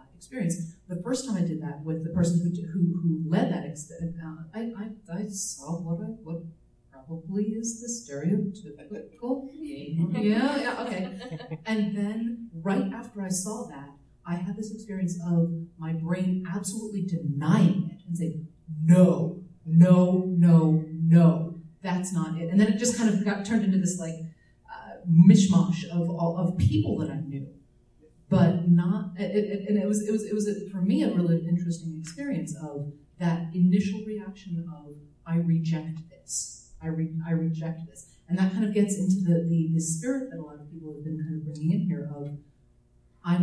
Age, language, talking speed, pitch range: 30-49, English, 180 wpm, 160-195 Hz